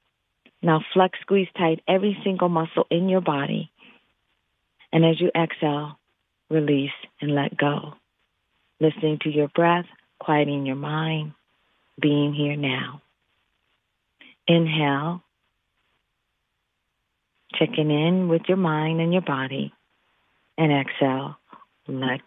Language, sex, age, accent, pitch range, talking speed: English, female, 40-59, American, 150-185 Hz, 110 wpm